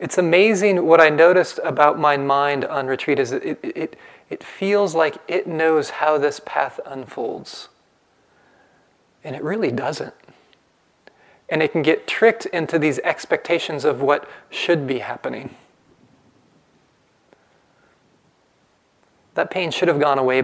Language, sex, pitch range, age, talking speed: English, male, 140-180 Hz, 30-49, 130 wpm